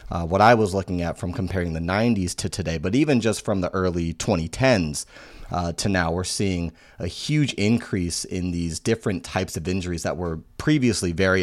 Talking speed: 195 wpm